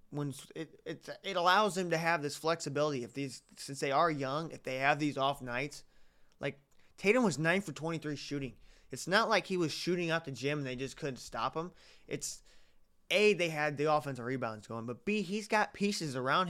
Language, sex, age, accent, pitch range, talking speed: English, male, 20-39, American, 130-165 Hz, 210 wpm